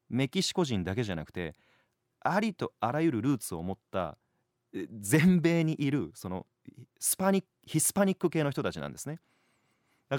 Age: 30-49